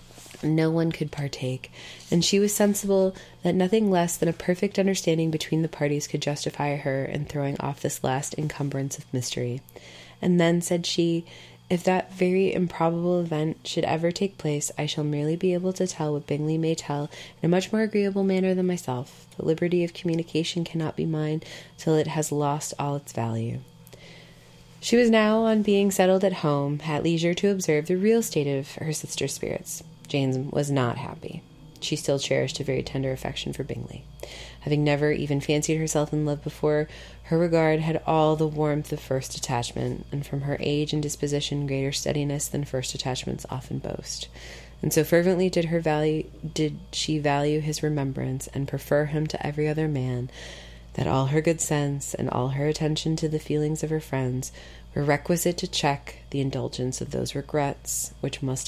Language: English